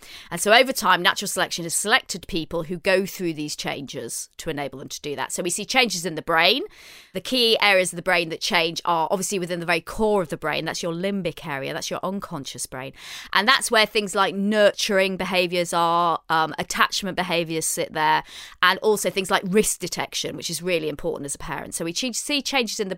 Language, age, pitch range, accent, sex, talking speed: English, 30-49, 165-200 Hz, British, female, 220 wpm